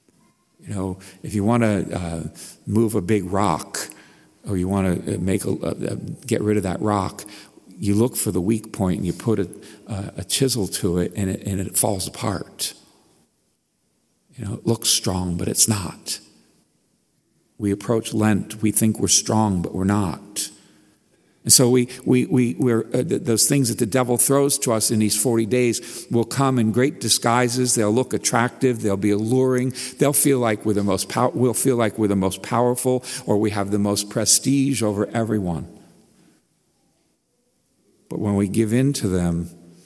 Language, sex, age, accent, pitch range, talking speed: English, male, 50-69, American, 100-115 Hz, 185 wpm